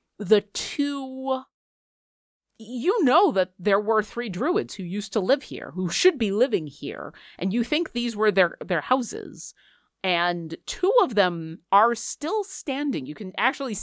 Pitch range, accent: 160-220 Hz, American